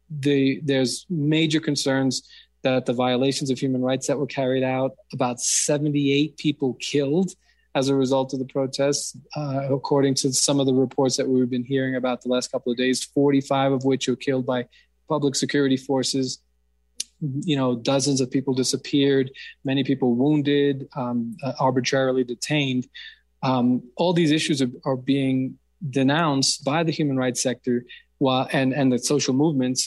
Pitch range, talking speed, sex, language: 125-140 Hz, 165 wpm, male, English